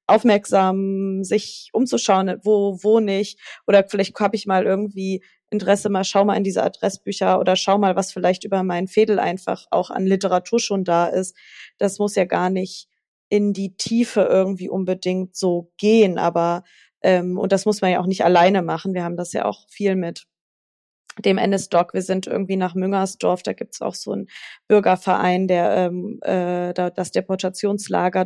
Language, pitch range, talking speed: German, 180-195 Hz, 180 wpm